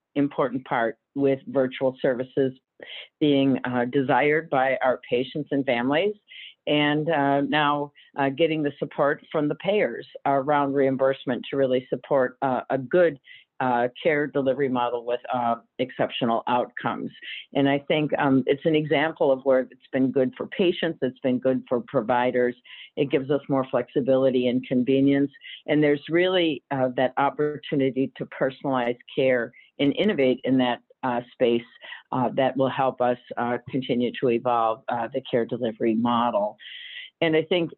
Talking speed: 155 wpm